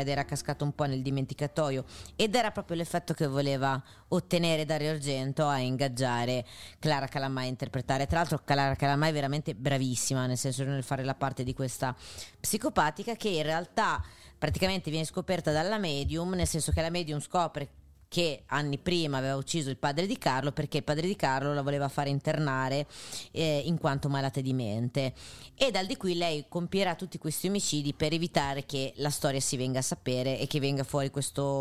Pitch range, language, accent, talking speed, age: 135-160 Hz, Italian, native, 190 wpm, 30-49